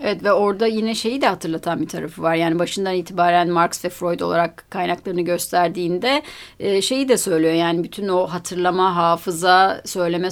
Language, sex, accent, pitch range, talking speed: Turkish, female, native, 180-240 Hz, 165 wpm